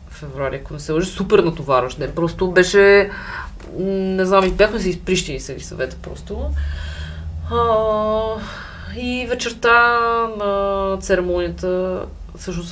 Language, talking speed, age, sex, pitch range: Bulgarian, 110 wpm, 20-39, female, 165-200 Hz